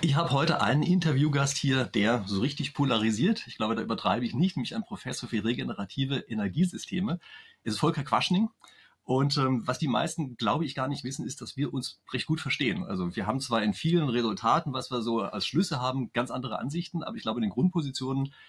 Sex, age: male, 30-49